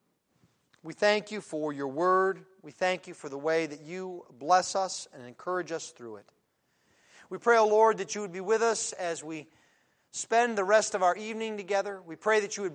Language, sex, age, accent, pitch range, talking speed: English, male, 40-59, American, 175-230 Hz, 210 wpm